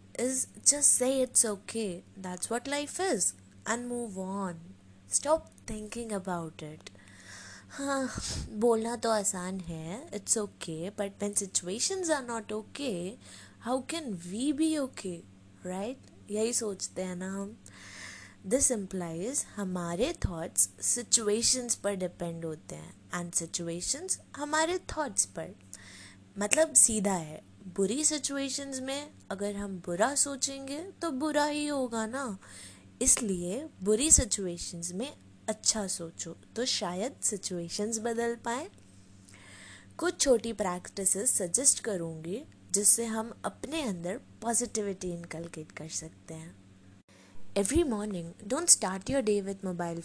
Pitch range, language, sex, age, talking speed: 170-245 Hz, Hindi, female, 20-39, 125 wpm